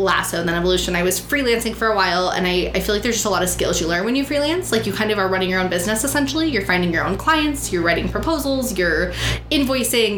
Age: 20-39